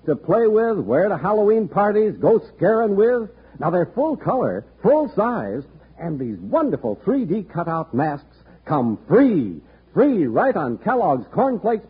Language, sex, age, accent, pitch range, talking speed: English, male, 70-89, American, 145-215 Hz, 145 wpm